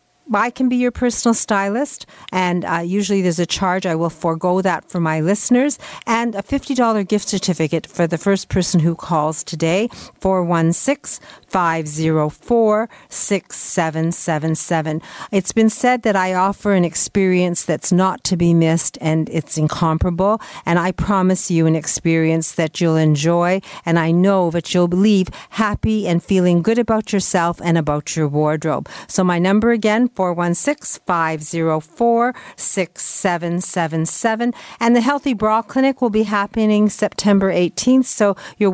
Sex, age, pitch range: female, 50-69, 170-220 Hz